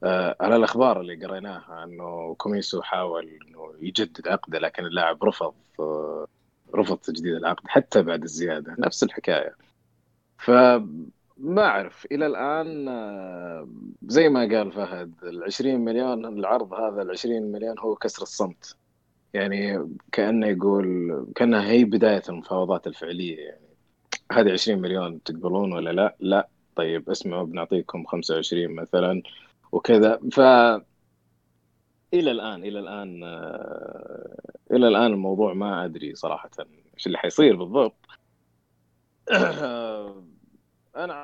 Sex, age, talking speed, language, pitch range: male, 30-49, 115 wpm, Arabic, 85-115 Hz